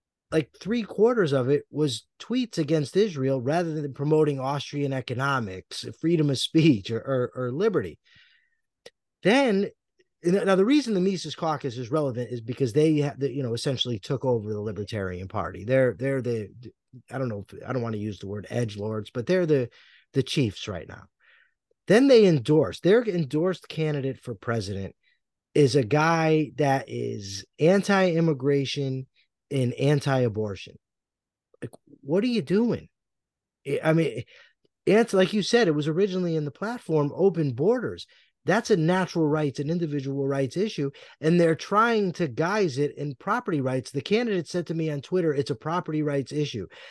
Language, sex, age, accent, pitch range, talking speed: English, male, 20-39, American, 130-175 Hz, 165 wpm